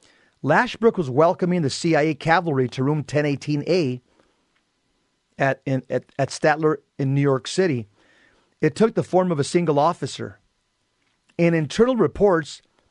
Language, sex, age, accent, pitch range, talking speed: English, male, 40-59, American, 140-180 Hz, 135 wpm